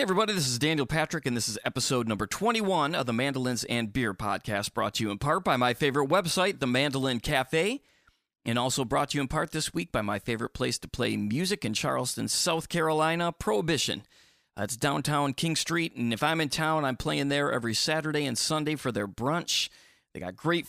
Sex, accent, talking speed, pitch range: male, American, 215 wpm, 120-160 Hz